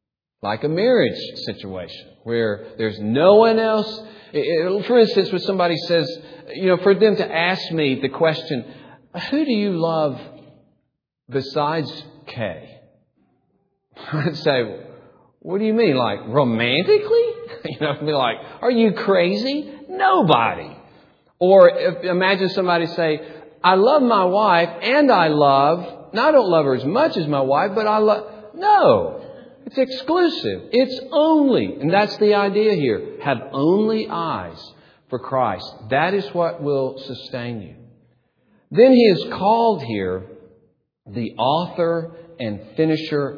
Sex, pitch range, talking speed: male, 135-210 Hz, 140 wpm